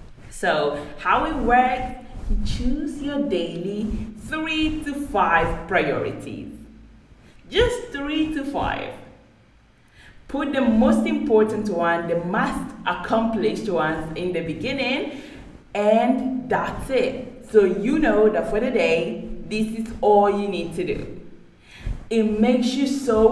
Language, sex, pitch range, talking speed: English, female, 185-250 Hz, 125 wpm